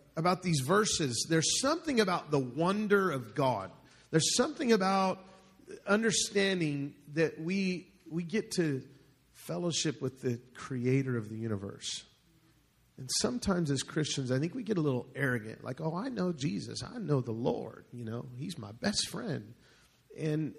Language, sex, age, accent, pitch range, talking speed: English, male, 40-59, American, 135-190 Hz, 155 wpm